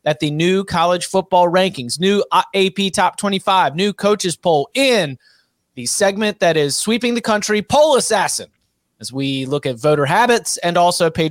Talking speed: 170 wpm